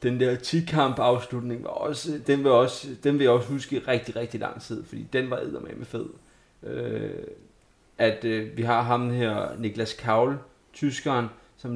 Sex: male